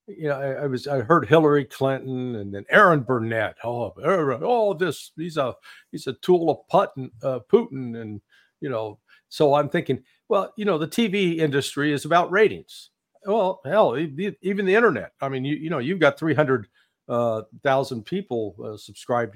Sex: male